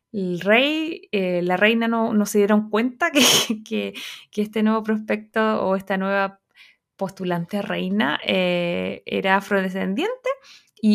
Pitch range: 195-245 Hz